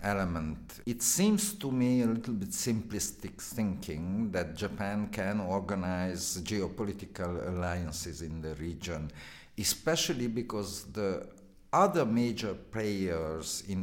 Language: Hungarian